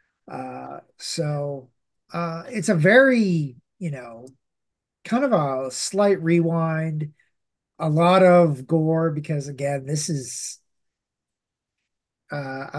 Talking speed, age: 105 wpm, 30-49